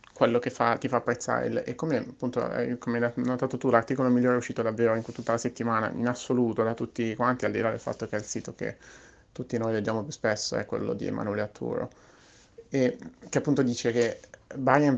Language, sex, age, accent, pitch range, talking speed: Italian, male, 30-49, native, 110-125 Hz, 215 wpm